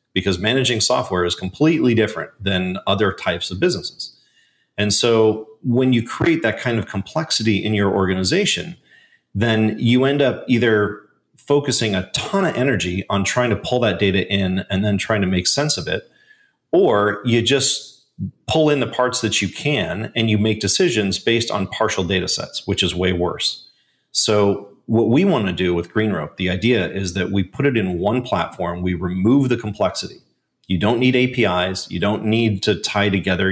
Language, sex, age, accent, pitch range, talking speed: English, male, 30-49, American, 95-120 Hz, 185 wpm